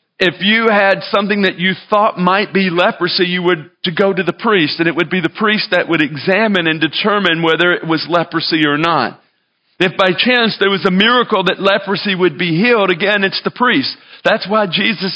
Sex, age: male, 40-59